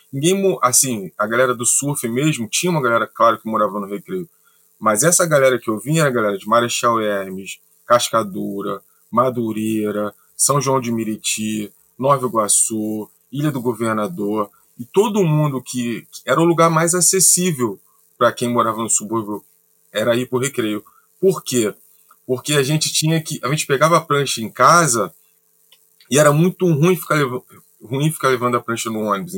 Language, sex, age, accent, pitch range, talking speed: Portuguese, male, 20-39, Brazilian, 115-155 Hz, 170 wpm